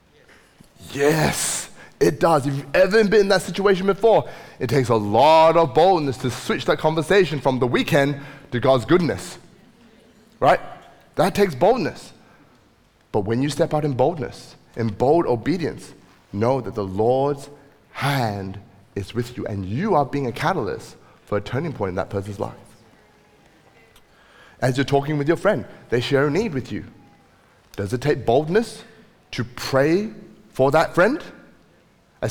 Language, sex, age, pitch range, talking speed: English, male, 30-49, 110-165 Hz, 160 wpm